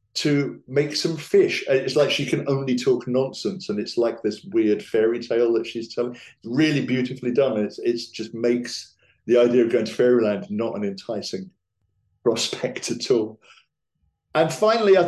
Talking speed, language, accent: 170 wpm, English, British